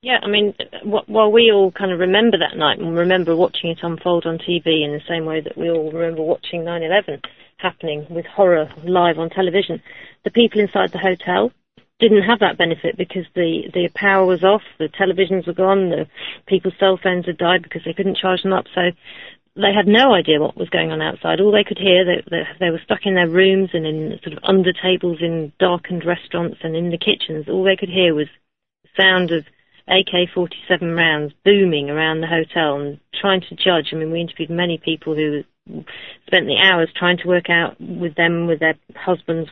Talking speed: 210 wpm